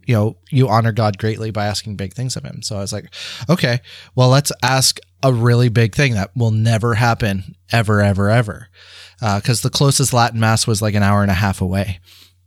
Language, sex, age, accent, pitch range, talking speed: English, male, 20-39, American, 105-135 Hz, 215 wpm